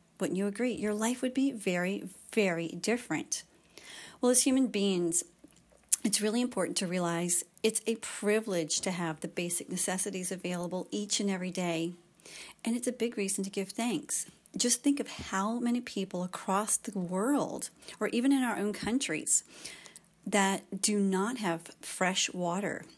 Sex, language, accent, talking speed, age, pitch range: female, English, American, 160 wpm, 40-59, 180-235 Hz